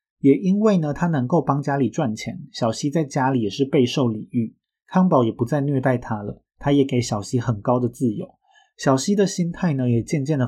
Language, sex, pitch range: Chinese, male, 120-150 Hz